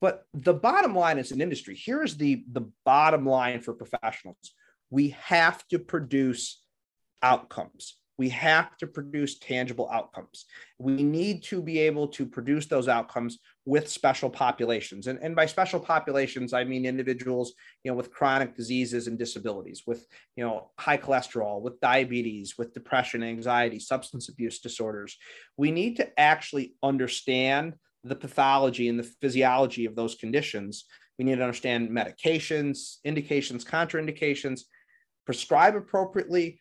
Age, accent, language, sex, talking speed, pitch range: 30-49, American, English, male, 135 wpm, 125-170 Hz